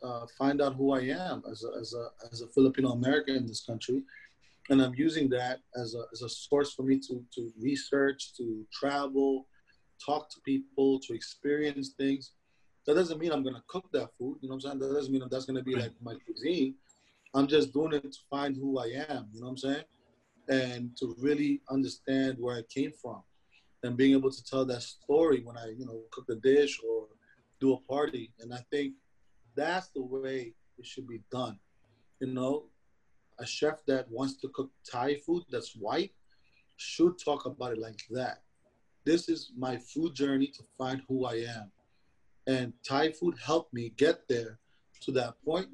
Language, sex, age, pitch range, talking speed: English, male, 30-49, 125-145 Hz, 200 wpm